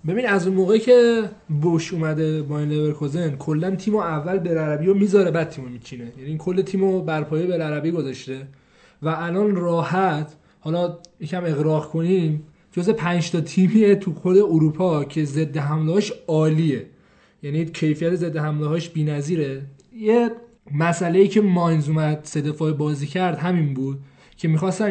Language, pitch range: Persian, 150-185 Hz